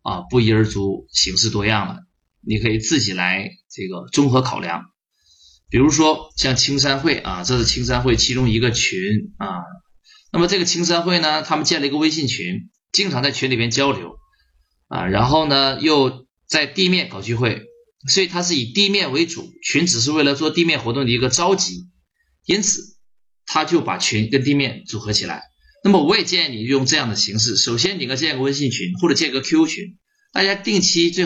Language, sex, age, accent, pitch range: Chinese, male, 20-39, native, 110-170 Hz